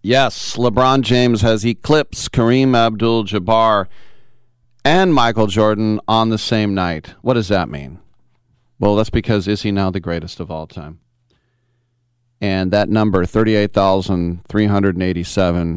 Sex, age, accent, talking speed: male, 40-59, American, 125 wpm